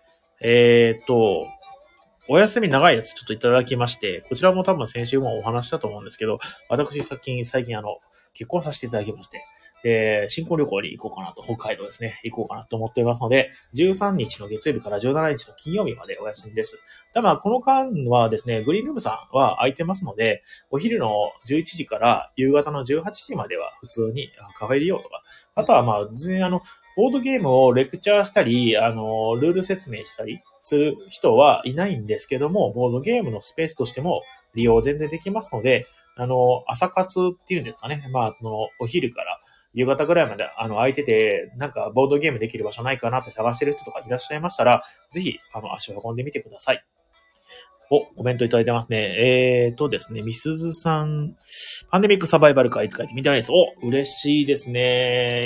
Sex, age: male, 30-49